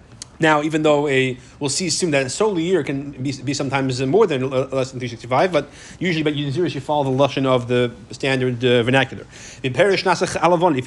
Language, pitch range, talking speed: English, 130-165 Hz, 190 wpm